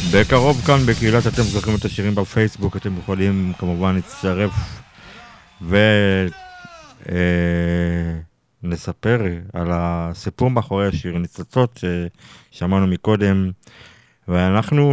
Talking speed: 90 wpm